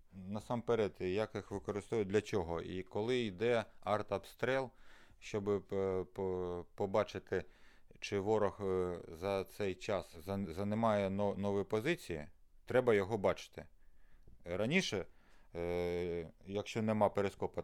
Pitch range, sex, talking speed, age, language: 90-105 Hz, male, 90 wpm, 30-49, Ukrainian